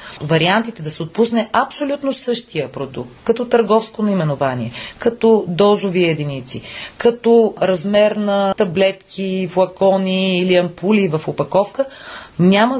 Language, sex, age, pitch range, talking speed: Bulgarian, female, 30-49, 155-220 Hz, 110 wpm